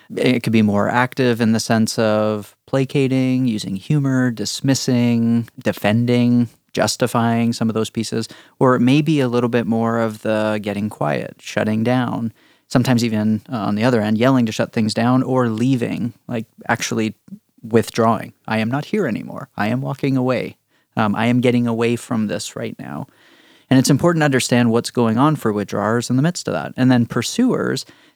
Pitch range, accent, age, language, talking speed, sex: 110-130 Hz, American, 30-49, English, 180 wpm, male